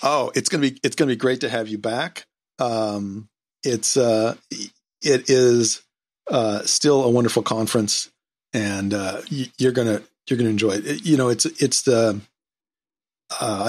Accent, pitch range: American, 105-125 Hz